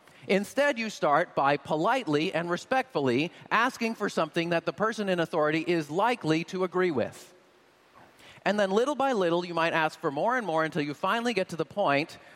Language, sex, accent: English, male, American